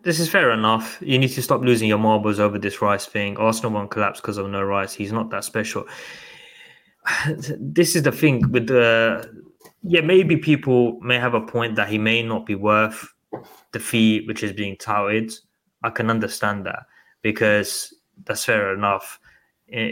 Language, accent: English, British